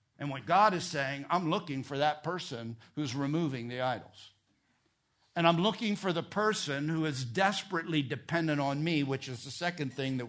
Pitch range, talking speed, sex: 135-165 Hz, 185 wpm, male